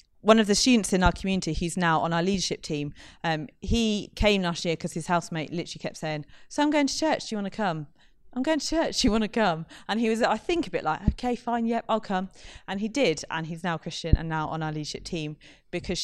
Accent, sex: British, female